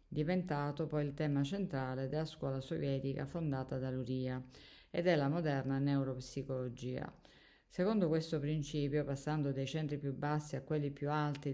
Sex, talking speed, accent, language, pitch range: female, 145 wpm, native, Italian, 135-150 Hz